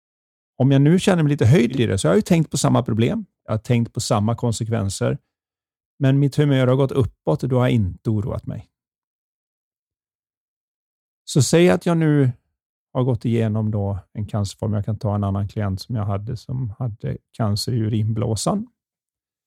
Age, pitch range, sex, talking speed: 40-59, 105-130 Hz, male, 185 wpm